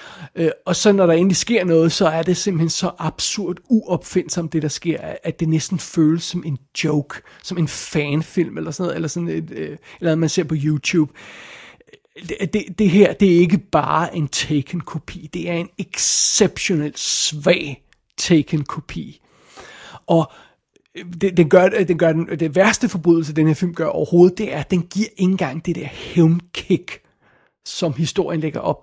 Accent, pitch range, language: native, 155-185 Hz, Danish